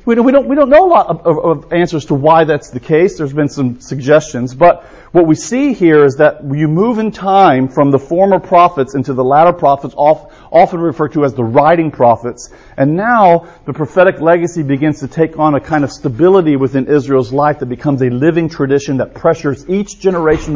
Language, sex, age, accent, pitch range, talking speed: English, male, 40-59, American, 130-170 Hz, 215 wpm